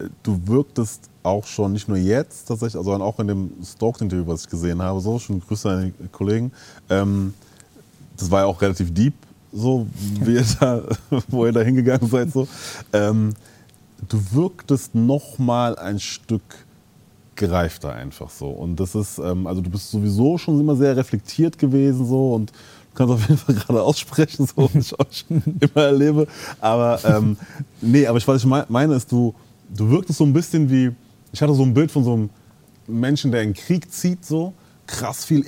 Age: 30-49